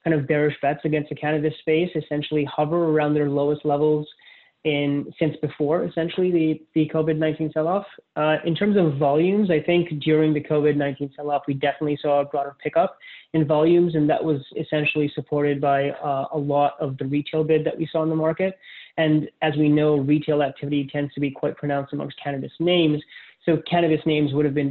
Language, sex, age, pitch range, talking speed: English, male, 20-39, 145-155 Hz, 195 wpm